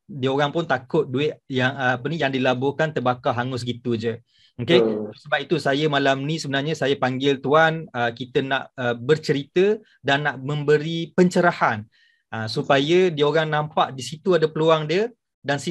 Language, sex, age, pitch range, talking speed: Malay, male, 20-39, 130-165 Hz, 170 wpm